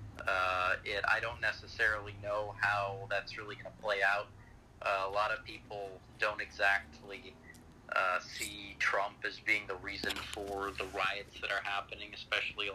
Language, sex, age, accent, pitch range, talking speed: English, male, 30-49, American, 100-110 Hz, 165 wpm